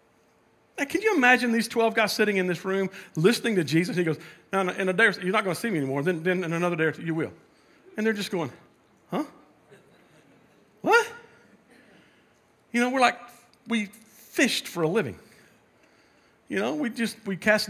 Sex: male